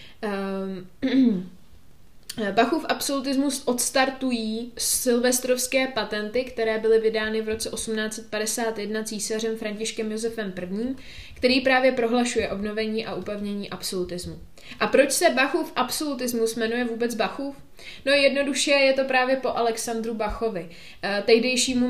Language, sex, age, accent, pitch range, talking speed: Czech, female, 20-39, native, 210-245 Hz, 105 wpm